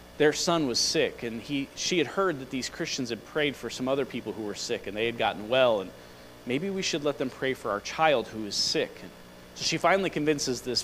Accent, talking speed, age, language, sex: American, 250 wpm, 40-59, English, male